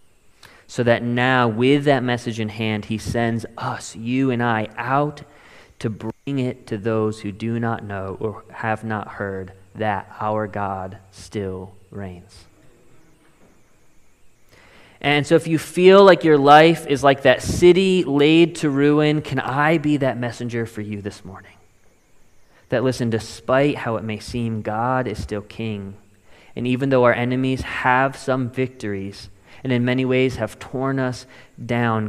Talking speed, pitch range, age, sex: 155 wpm, 105-130 Hz, 20-39, male